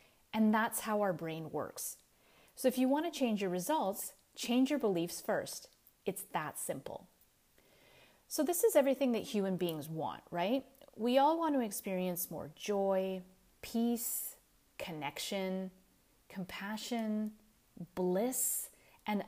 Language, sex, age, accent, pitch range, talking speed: English, female, 30-49, American, 180-240 Hz, 130 wpm